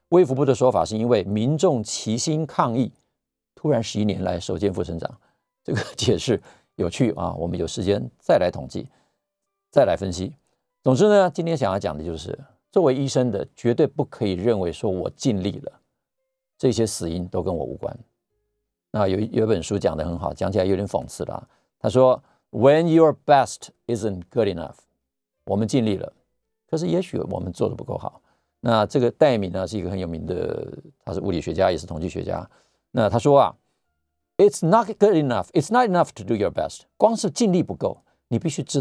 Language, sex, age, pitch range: Chinese, male, 50-69, 95-145 Hz